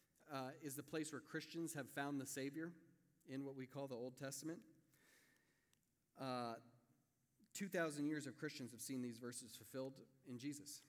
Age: 40-59